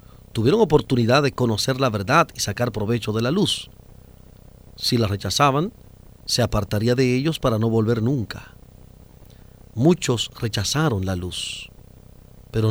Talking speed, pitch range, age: 130 wpm, 105-125 Hz, 40-59